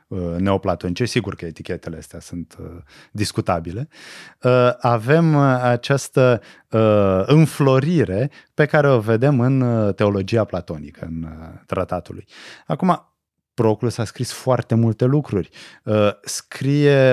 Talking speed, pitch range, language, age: 100 wpm, 95-135 Hz, Romanian, 30-49